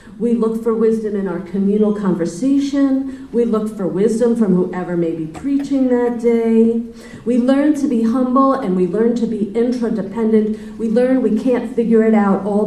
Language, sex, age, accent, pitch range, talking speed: English, female, 40-59, American, 185-240 Hz, 180 wpm